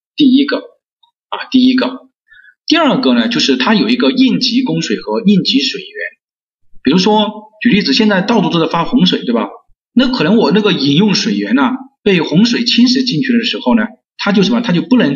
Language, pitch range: Chinese, 210-255 Hz